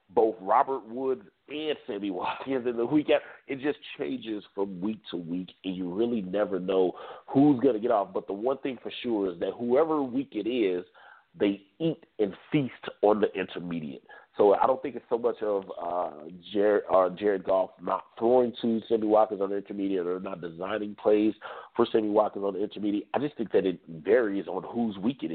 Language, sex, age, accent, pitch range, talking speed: English, male, 40-59, American, 100-130 Hz, 205 wpm